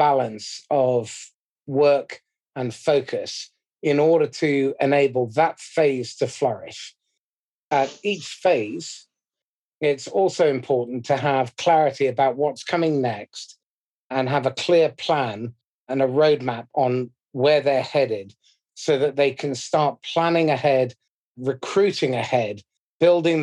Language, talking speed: English, 125 wpm